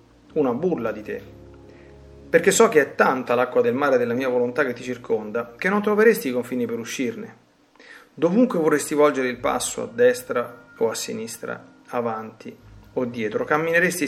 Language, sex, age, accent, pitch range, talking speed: Italian, male, 40-59, native, 120-180 Hz, 165 wpm